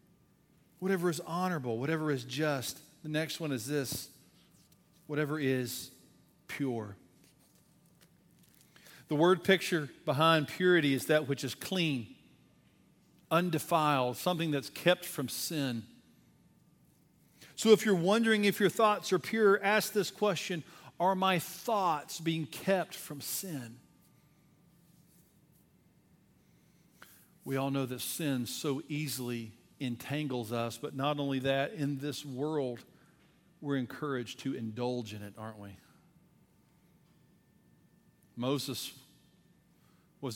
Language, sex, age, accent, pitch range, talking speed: English, male, 50-69, American, 130-180 Hz, 110 wpm